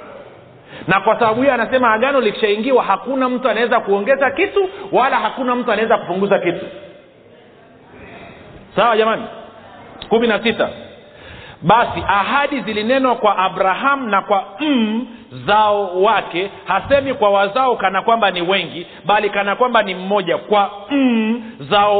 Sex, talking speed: male, 130 wpm